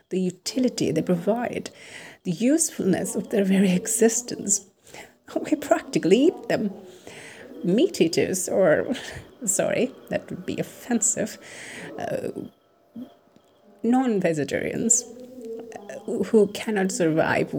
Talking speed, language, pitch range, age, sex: 95 wpm, English, 155-230 Hz, 30-49, female